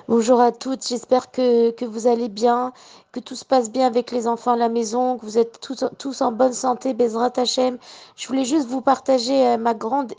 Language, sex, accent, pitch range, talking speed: French, female, French, 245-275 Hz, 220 wpm